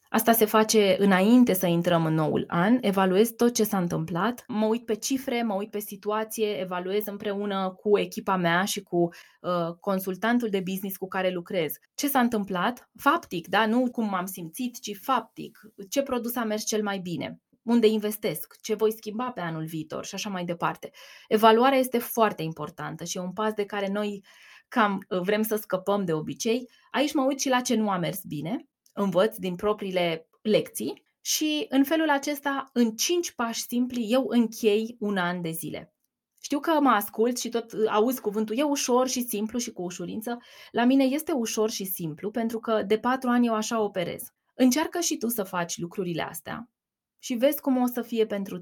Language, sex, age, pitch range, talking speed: Romanian, female, 20-39, 190-240 Hz, 190 wpm